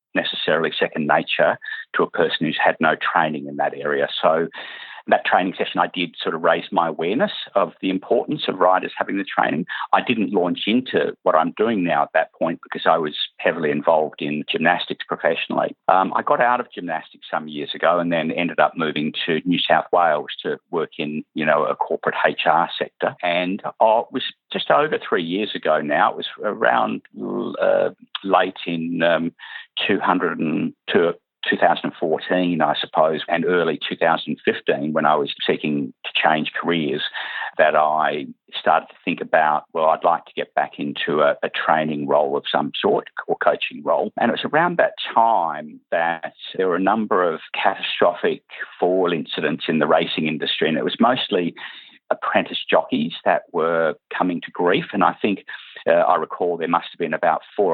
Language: English